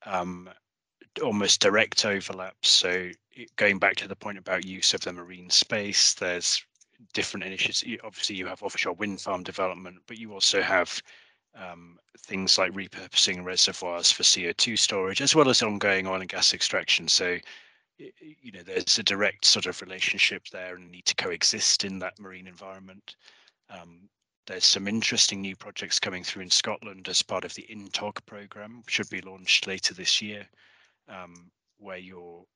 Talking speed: 165 wpm